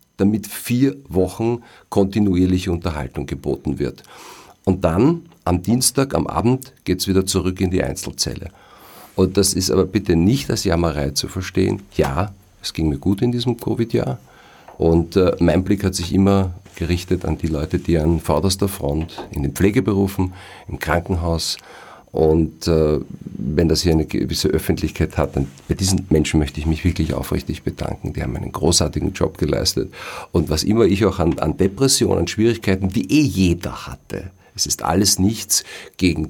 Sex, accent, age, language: male, German, 50-69, German